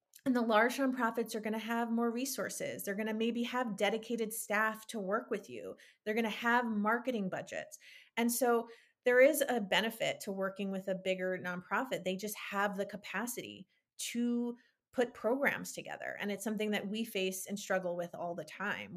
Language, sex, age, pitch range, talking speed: English, female, 30-49, 185-230 Hz, 190 wpm